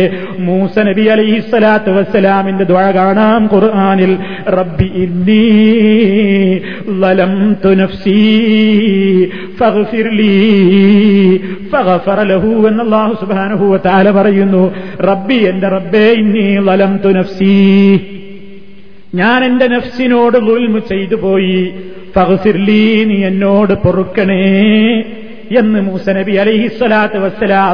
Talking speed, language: 95 wpm, Malayalam